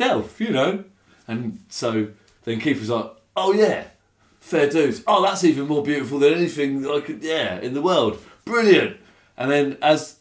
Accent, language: British, English